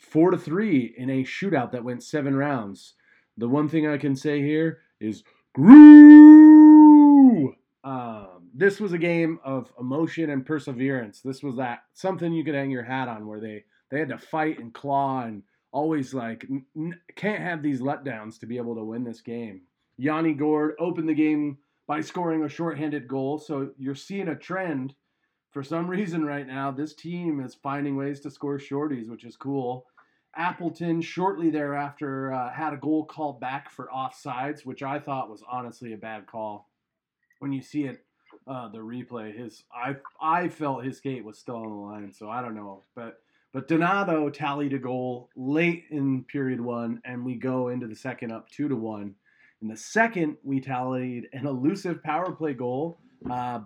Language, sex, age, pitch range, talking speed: English, male, 30-49, 125-155 Hz, 185 wpm